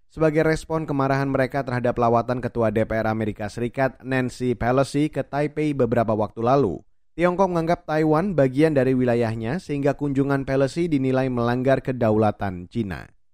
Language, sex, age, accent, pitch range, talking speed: Indonesian, male, 20-39, native, 125-155 Hz, 135 wpm